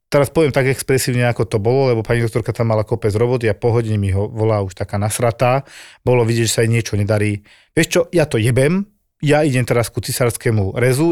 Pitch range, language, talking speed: 115-155 Hz, Slovak, 215 wpm